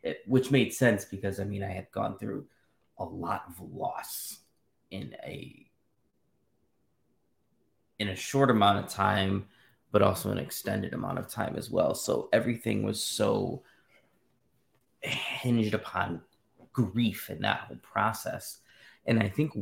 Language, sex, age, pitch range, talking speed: English, male, 20-39, 95-110 Hz, 140 wpm